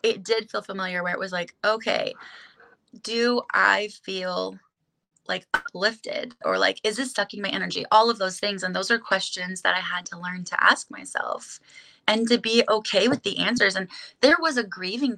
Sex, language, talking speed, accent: female, English, 195 wpm, American